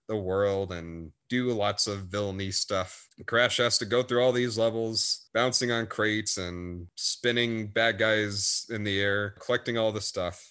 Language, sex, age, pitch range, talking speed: English, male, 30-49, 100-120 Hz, 170 wpm